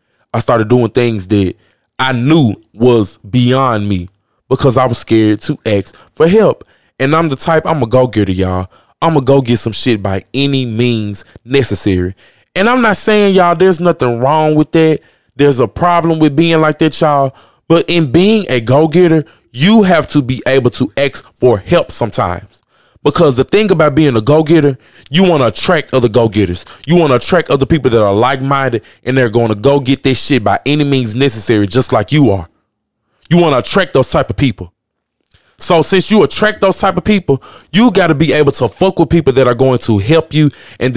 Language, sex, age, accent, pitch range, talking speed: English, male, 20-39, American, 115-160 Hz, 205 wpm